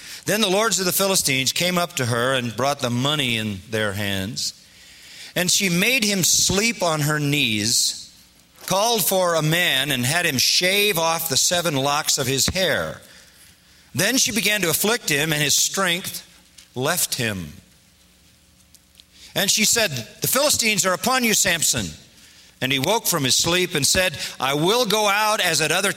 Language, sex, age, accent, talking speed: English, male, 40-59, American, 175 wpm